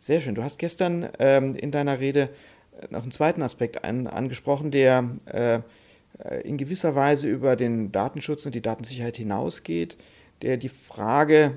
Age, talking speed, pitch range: 40-59, 155 wpm, 110-140 Hz